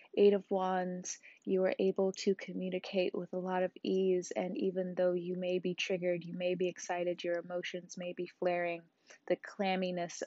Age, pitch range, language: 20-39, 175-200 Hz, English